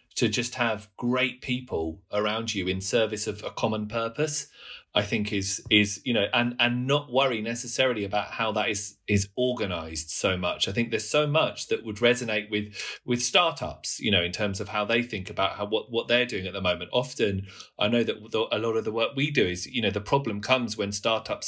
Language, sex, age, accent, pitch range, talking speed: English, male, 30-49, British, 105-125 Hz, 225 wpm